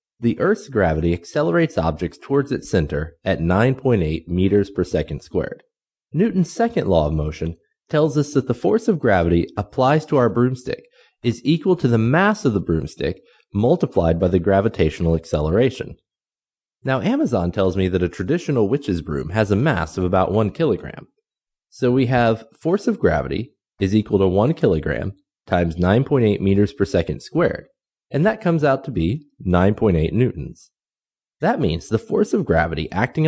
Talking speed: 165 wpm